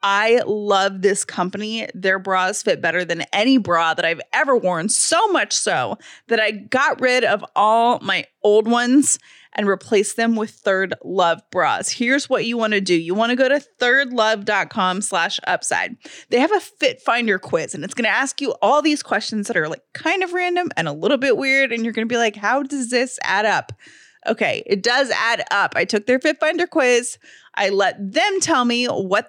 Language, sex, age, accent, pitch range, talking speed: English, female, 20-39, American, 205-270 Hz, 205 wpm